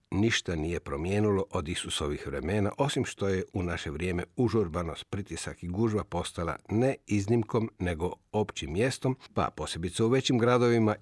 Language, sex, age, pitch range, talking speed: Croatian, male, 50-69, 90-115 Hz, 145 wpm